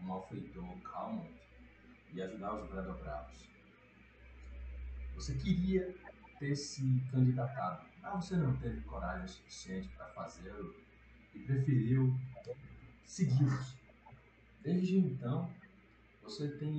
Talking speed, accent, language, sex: 100 wpm, Brazilian, Portuguese, male